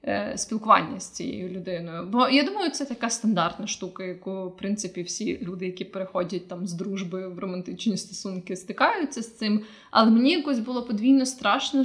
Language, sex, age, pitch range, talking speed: Ukrainian, female, 20-39, 195-235 Hz, 165 wpm